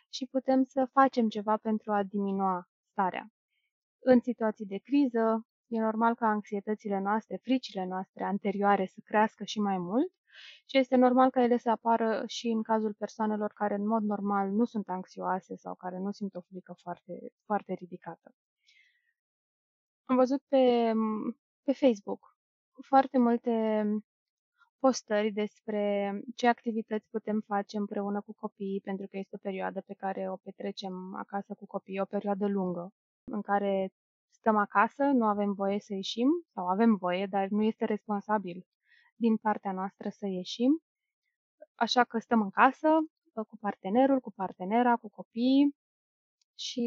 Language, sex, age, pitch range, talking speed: Romanian, female, 20-39, 200-245 Hz, 150 wpm